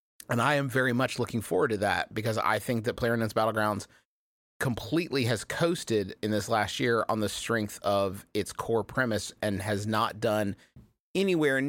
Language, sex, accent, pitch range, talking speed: English, male, American, 105-130 Hz, 175 wpm